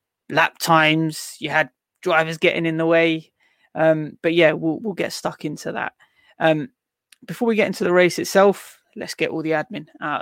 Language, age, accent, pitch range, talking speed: English, 20-39, British, 160-180 Hz, 190 wpm